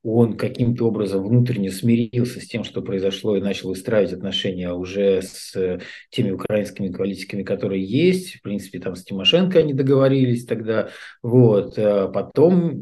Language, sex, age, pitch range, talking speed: Russian, male, 50-69, 95-125 Hz, 145 wpm